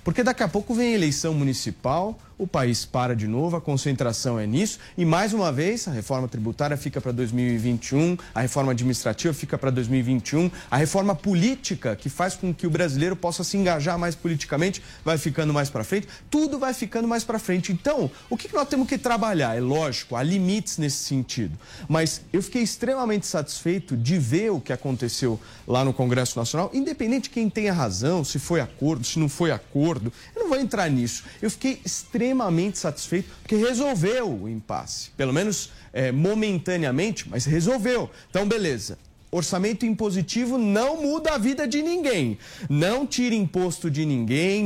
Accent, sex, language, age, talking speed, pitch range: Brazilian, male, Portuguese, 40-59, 175 wpm, 140-235 Hz